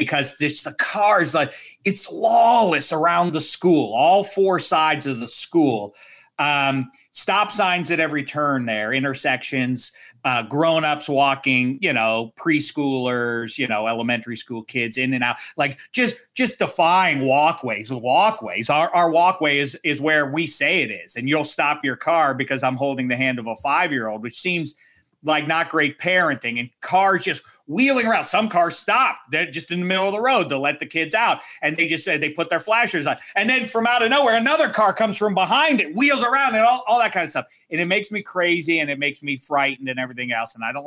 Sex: male